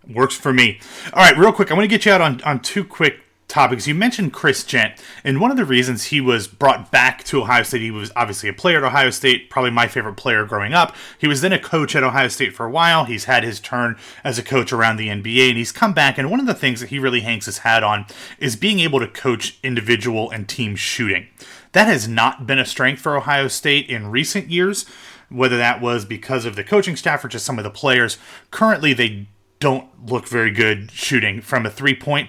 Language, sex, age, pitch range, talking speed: English, male, 30-49, 115-145 Hz, 240 wpm